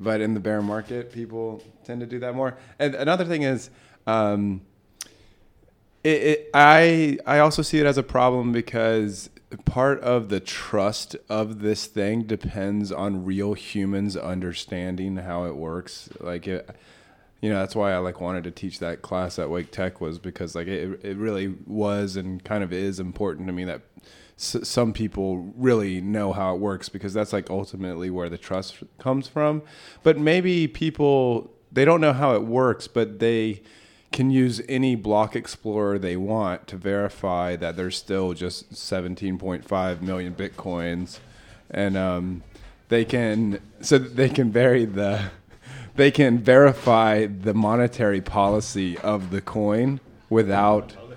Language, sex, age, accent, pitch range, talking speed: English, male, 20-39, American, 95-120 Hz, 160 wpm